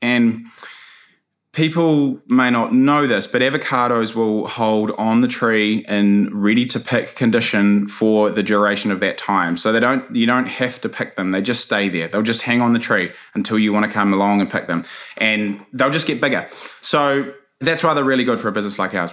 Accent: Australian